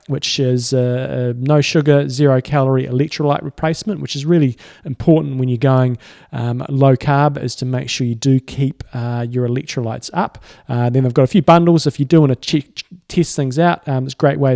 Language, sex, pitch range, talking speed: English, male, 130-155 Hz, 210 wpm